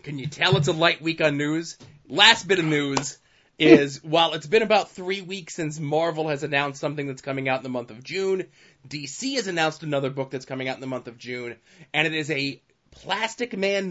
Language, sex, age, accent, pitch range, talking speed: English, male, 20-39, American, 135-165 Hz, 225 wpm